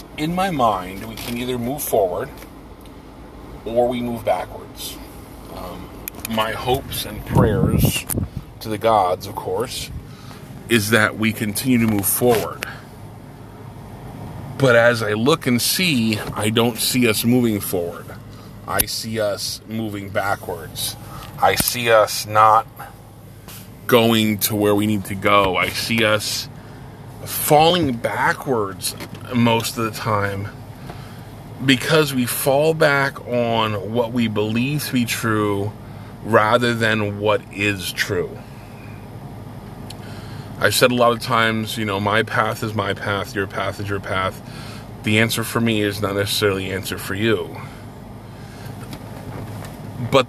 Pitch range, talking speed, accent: 105-120 Hz, 135 wpm, American